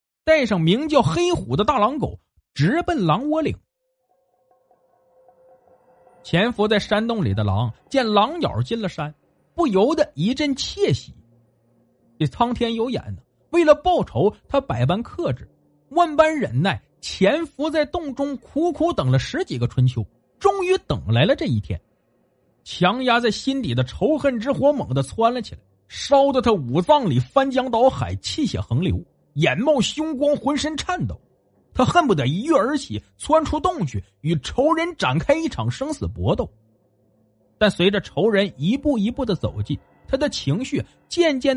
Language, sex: Chinese, male